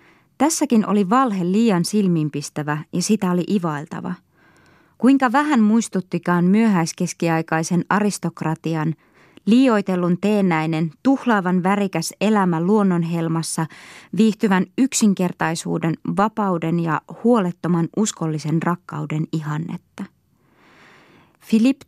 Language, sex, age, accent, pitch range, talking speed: Finnish, female, 20-39, native, 165-210 Hz, 80 wpm